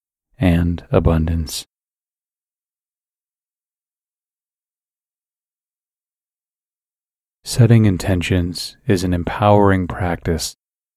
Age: 30-49